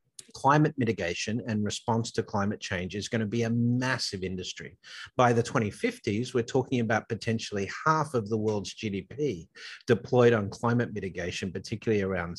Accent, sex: Australian, male